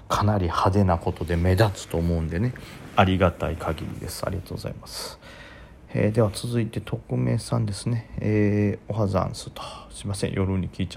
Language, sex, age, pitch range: Japanese, male, 40-59, 95-115 Hz